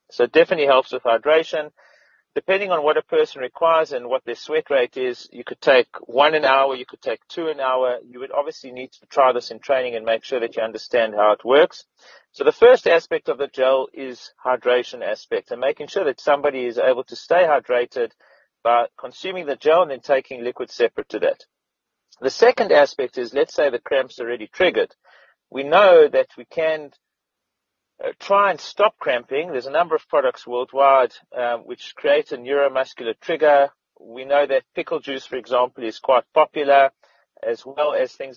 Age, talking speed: 40-59, 195 wpm